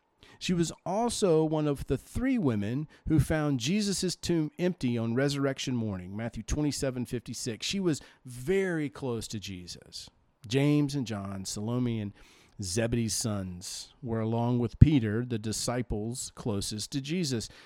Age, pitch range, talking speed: 50-69, 115-160 Hz, 140 wpm